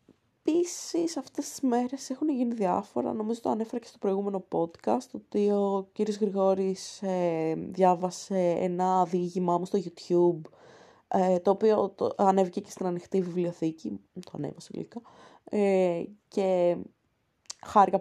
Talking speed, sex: 135 wpm, female